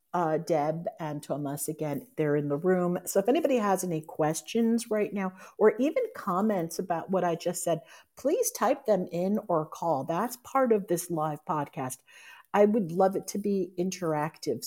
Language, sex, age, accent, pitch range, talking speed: English, female, 50-69, American, 165-225 Hz, 180 wpm